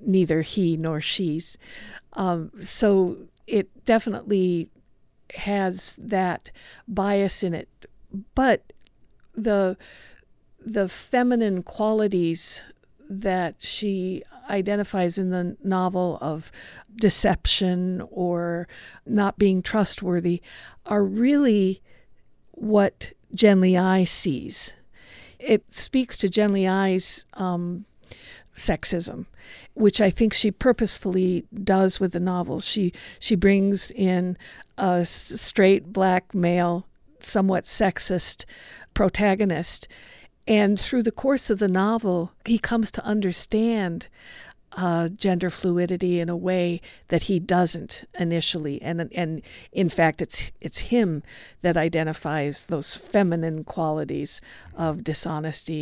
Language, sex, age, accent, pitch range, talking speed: English, female, 50-69, American, 175-205 Hz, 105 wpm